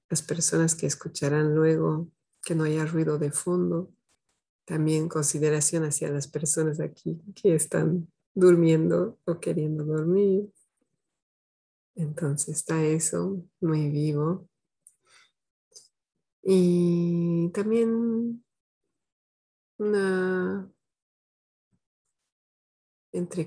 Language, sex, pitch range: Spanish, female, 150-180 Hz